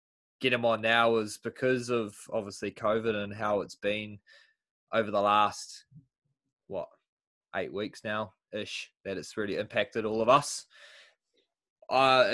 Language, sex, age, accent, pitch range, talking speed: English, male, 20-39, Australian, 105-125 Hz, 140 wpm